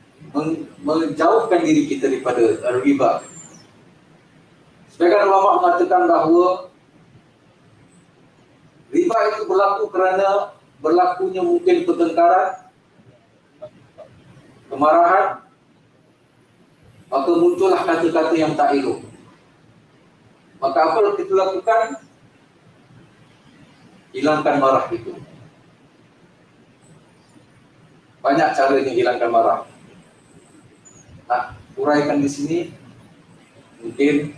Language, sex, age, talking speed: Malay, male, 40-59, 75 wpm